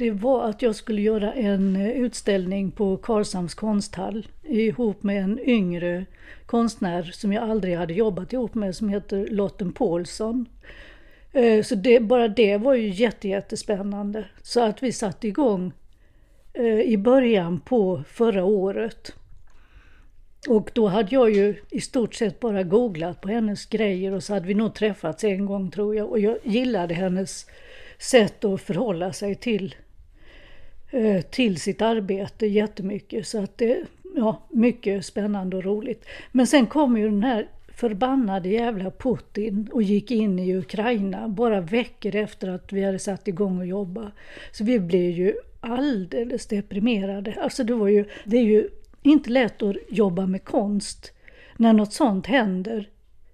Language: Swedish